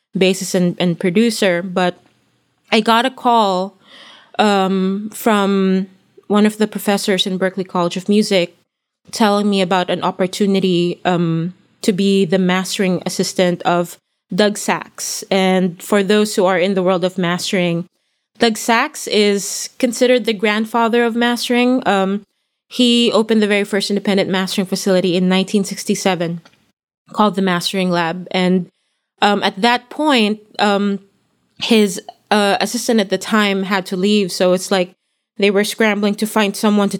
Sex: female